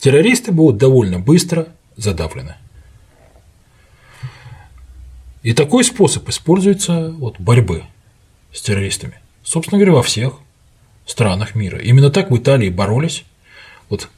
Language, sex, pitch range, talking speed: Russian, male, 90-130 Hz, 105 wpm